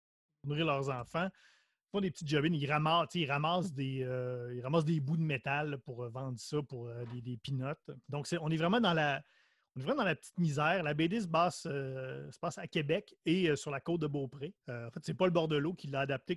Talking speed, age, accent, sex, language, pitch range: 260 wpm, 30-49, Canadian, male, French, 135-175 Hz